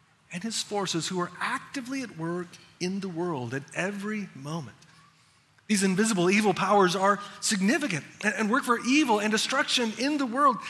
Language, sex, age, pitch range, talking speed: English, male, 30-49, 165-235 Hz, 165 wpm